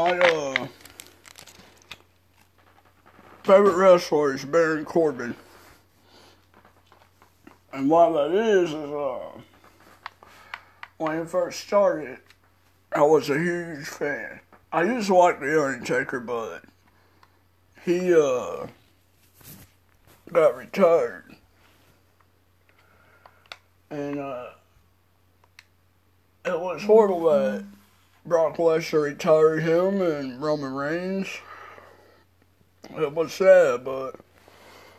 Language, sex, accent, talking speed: English, male, American, 85 wpm